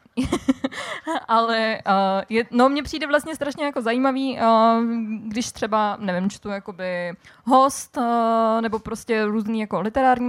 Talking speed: 140 wpm